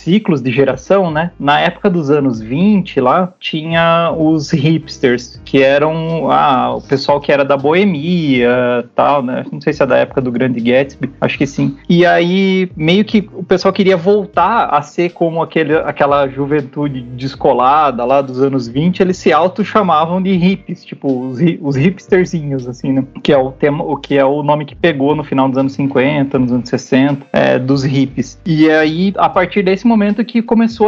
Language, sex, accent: Portuguese, male, Brazilian